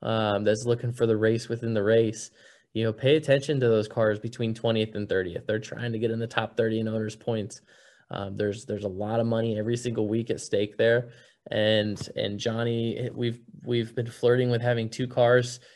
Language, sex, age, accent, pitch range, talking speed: English, male, 20-39, American, 115-130 Hz, 210 wpm